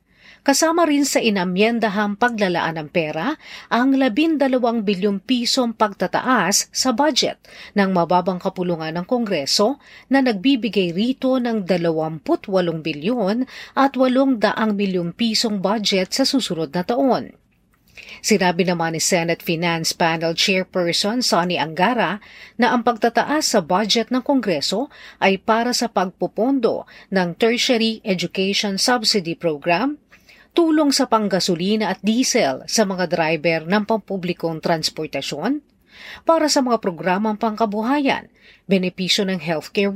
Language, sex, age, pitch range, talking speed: Filipino, female, 40-59, 180-245 Hz, 115 wpm